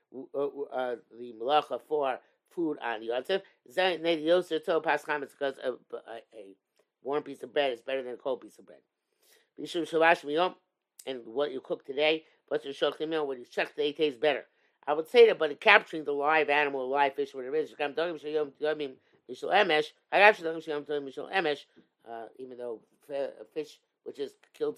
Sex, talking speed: male, 155 wpm